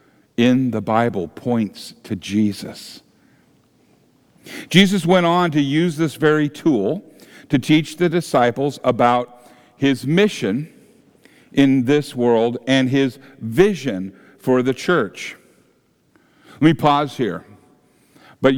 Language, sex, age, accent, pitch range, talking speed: English, male, 50-69, American, 130-180 Hz, 115 wpm